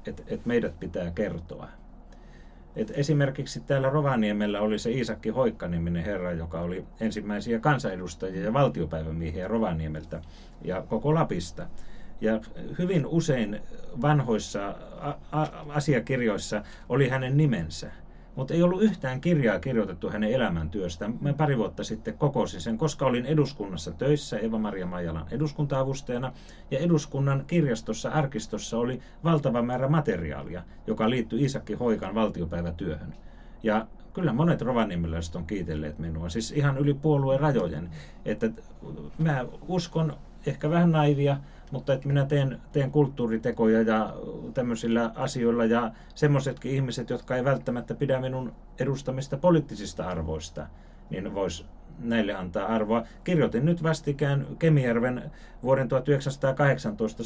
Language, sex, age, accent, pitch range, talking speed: Finnish, male, 30-49, native, 90-140 Hz, 115 wpm